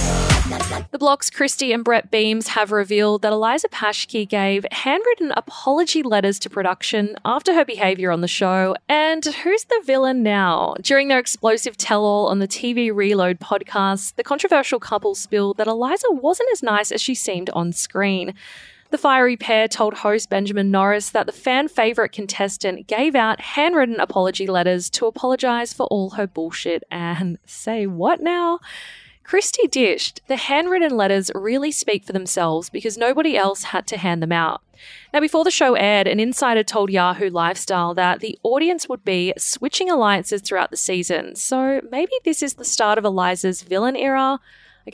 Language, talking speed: English, 165 wpm